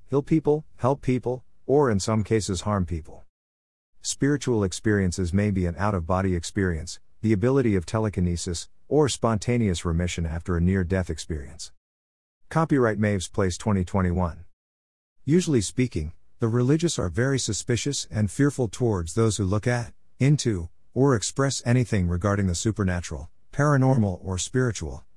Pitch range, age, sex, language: 90-125 Hz, 50-69, male, English